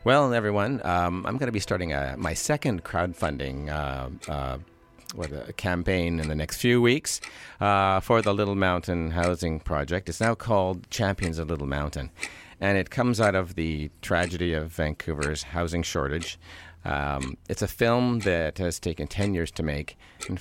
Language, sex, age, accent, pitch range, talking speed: English, male, 50-69, American, 80-105 Hz, 175 wpm